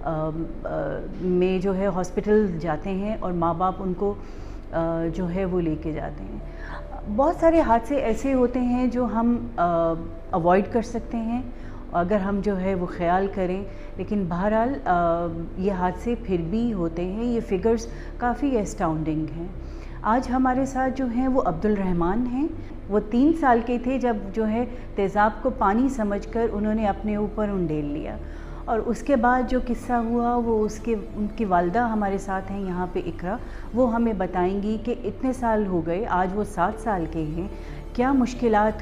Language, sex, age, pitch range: Urdu, female, 40-59, 180-235 Hz